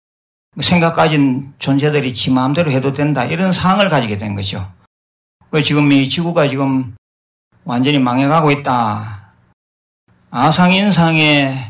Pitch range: 105-150 Hz